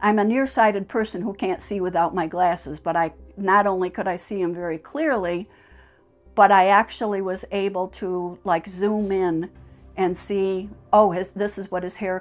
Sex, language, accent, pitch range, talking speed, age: female, English, American, 180-210 Hz, 185 wpm, 60-79